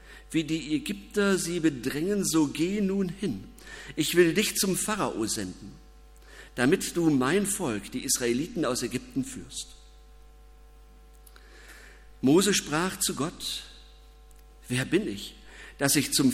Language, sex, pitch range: German, male, 135-195 Hz